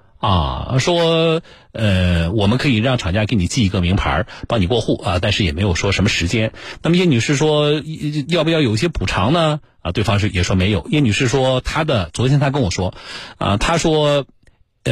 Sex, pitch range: male, 100-155 Hz